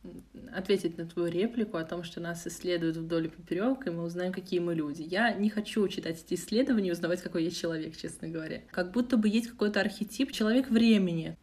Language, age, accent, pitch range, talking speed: Russian, 20-39, native, 175-210 Hz, 205 wpm